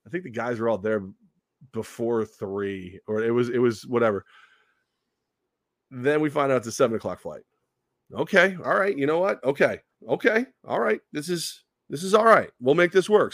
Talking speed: 200 wpm